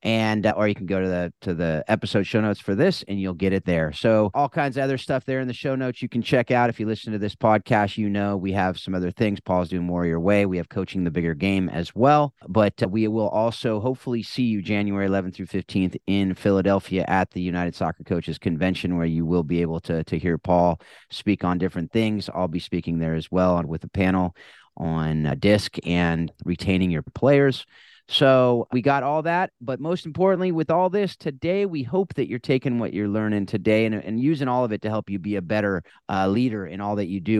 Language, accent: English, American